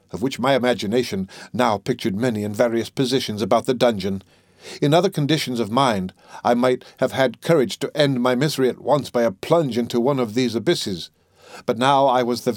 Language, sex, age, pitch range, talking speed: English, male, 60-79, 110-135 Hz, 200 wpm